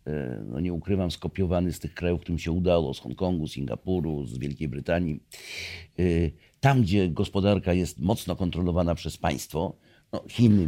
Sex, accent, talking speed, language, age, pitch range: male, native, 150 wpm, Polish, 50-69, 80-100 Hz